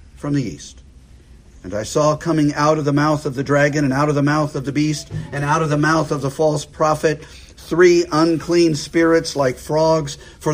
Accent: American